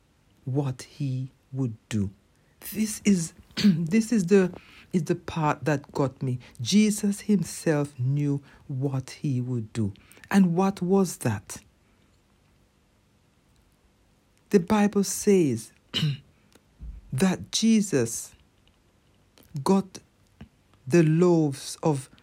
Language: English